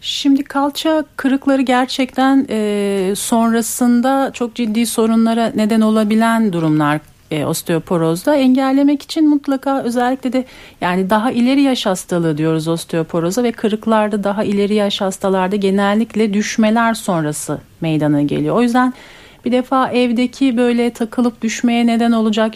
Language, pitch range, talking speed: Turkish, 185-230 Hz, 120 wpm